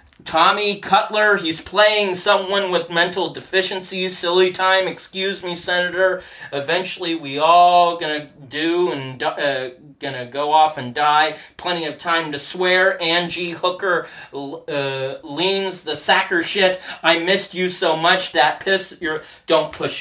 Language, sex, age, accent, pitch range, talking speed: English, male, 40-59, American, 150-185 Hz, 140 wpm